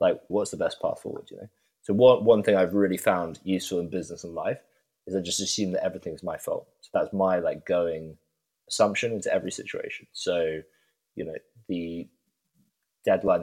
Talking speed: 190 wpm